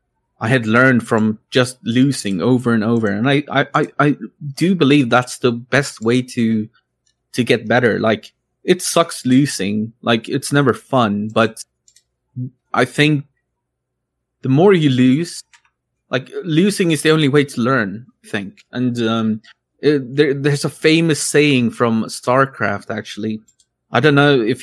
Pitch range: 110-135 Hz